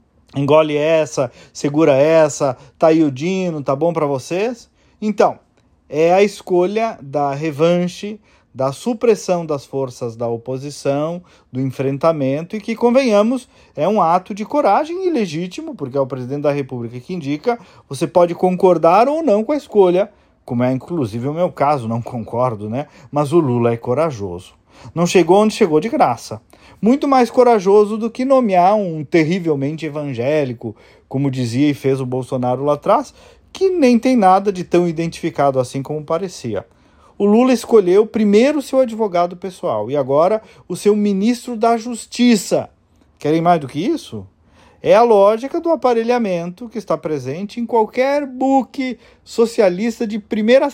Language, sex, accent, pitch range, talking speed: Portuguese, male, Brazilian, 140-215 Hz, 155 wpm